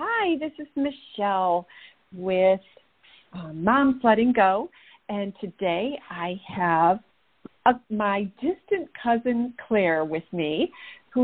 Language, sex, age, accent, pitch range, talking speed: English, female, 50-69, American, 165-215 Hz, 110 wpm